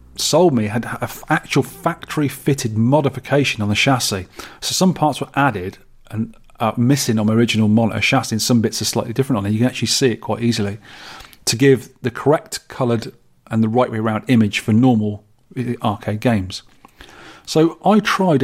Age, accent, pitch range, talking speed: 40-59, British, 110-130 Hz, 185 wpm